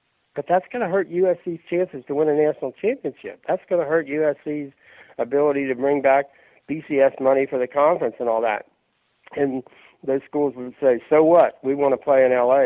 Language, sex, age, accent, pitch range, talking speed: English, male, 60-79, American, 135-185 Hz, 200 wpm